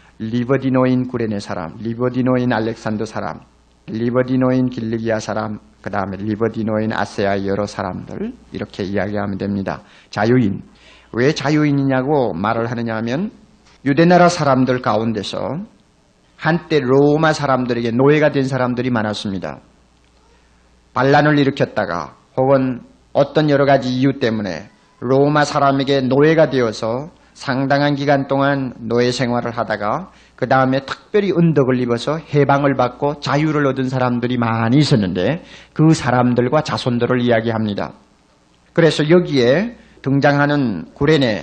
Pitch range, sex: 110-140 Hz, male